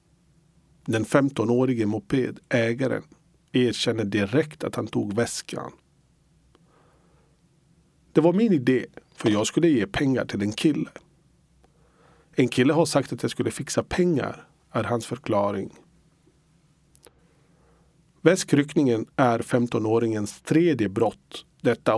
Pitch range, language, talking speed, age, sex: 115-160 Hz, Swedish, 105 wpm, 50-69, male